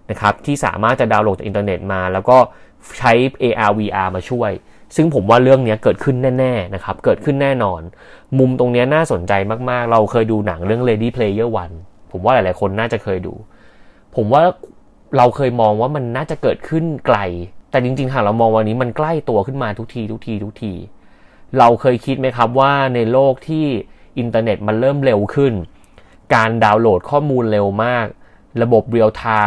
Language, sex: Thai, male